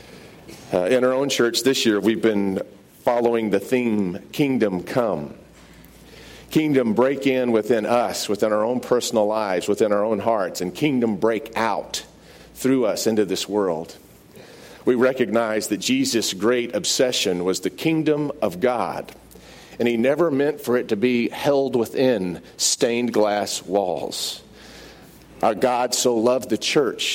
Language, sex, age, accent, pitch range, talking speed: English, male, 50-69, American, 110-130 Hz, 150 wpm